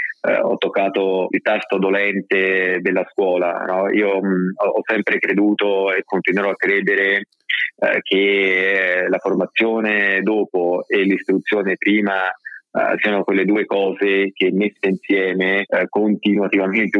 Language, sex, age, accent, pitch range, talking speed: Italian, male, 20-39, native, 95-105 Hz, 105 wpm